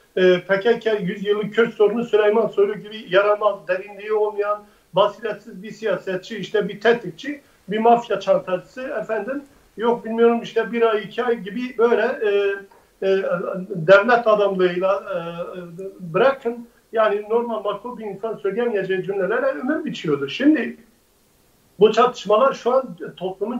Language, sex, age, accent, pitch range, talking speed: Turkish, male, 50-69, native, 200-230 Hz, 130 wpm